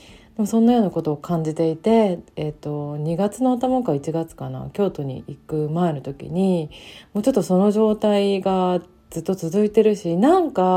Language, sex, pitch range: Japanese, female, 150-215 Hz